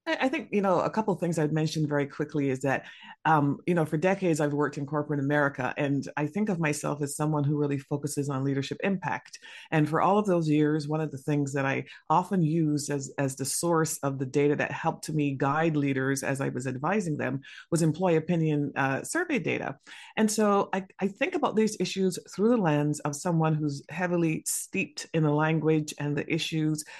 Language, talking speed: English, 215 wpm